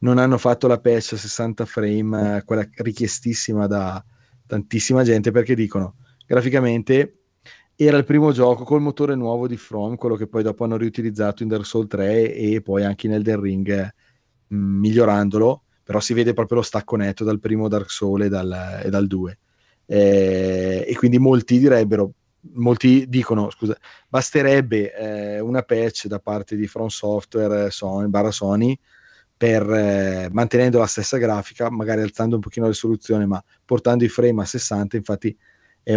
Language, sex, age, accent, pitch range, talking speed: Italian, male, 30-49, native, 105-120 Hz, 165 wpm